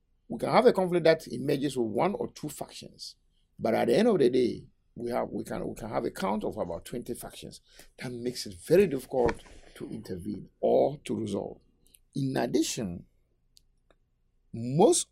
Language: English